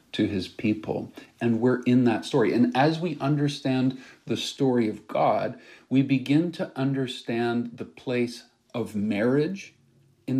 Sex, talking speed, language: male, 140 wpm, English